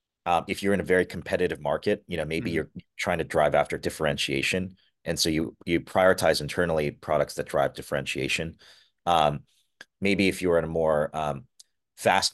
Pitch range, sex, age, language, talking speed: 75-95 Hz, male, 30-49, English, 180 wpm